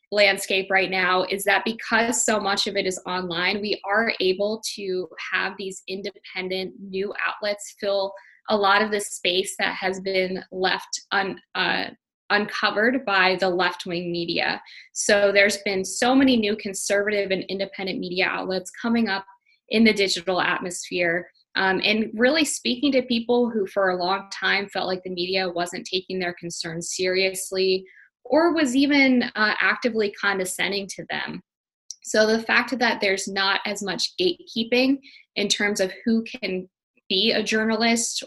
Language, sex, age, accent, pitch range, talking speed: English, female, 20-39, American, 185-215 Hz, 155 wpm